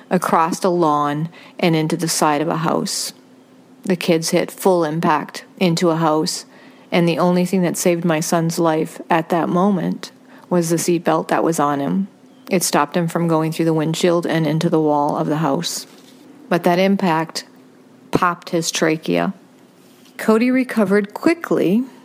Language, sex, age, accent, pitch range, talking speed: English, female, 40-59, American, 165-190 Hz, 165 wpm